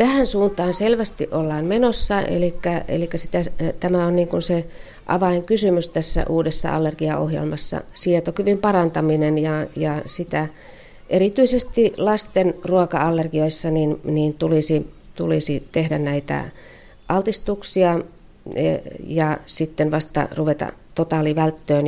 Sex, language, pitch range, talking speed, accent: female, Finnish, 155-180 Hz, 100 wpm, native